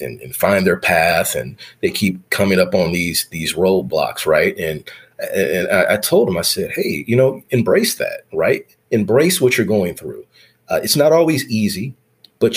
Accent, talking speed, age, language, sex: American, 190 wpm, 30-49, English, male